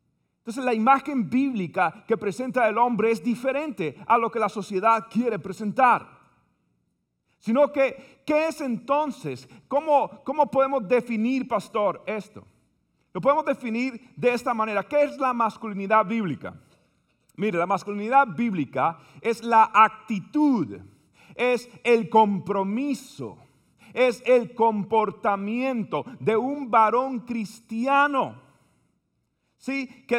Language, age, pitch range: Spanish, 40-59, 220-265 Hz